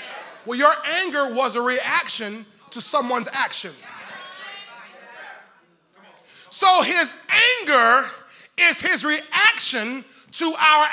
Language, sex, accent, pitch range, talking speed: English, male, American, 295-410 Hz, 95 wpm